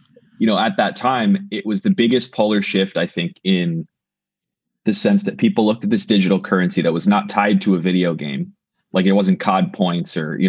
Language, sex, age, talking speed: English, male, 20-39, 210 wpm